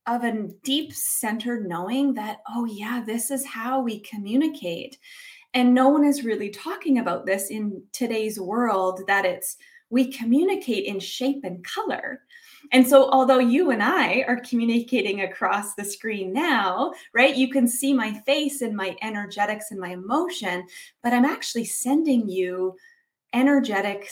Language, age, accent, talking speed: English, 20-39, American, 150 wpm